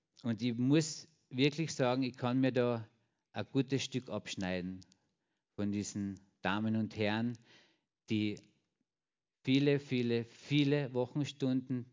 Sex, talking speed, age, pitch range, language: male, 115 wpm, 50-69, 100-120 Hz, German